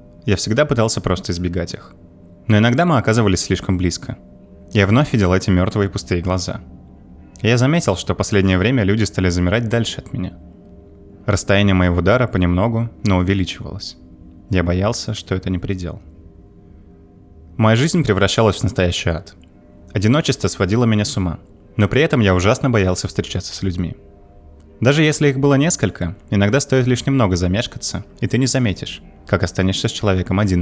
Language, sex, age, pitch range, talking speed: Russian, male, 20-39, 90-115 Hz, 160 wpm